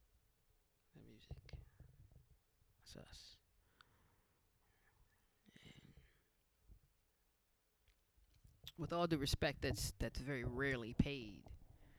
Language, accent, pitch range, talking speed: English, American, 90-145 Hz, 65 wpm